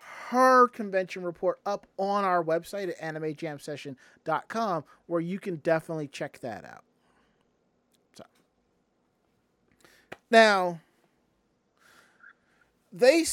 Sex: male